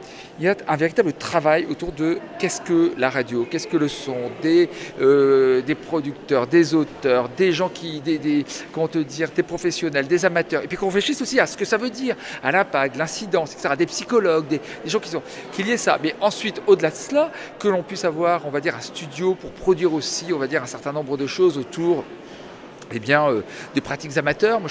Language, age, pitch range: French, 40-59, 150-205 Hz